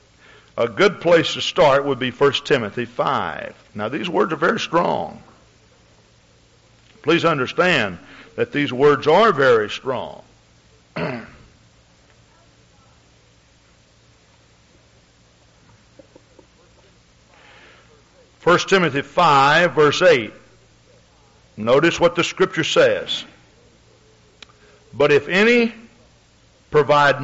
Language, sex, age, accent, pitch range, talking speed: English, male, 60-79, American, 130-190 Hz, 85 wpm